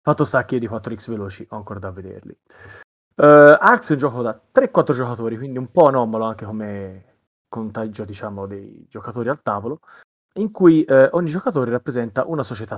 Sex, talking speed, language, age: male, 160 wpm, Italian, 30-49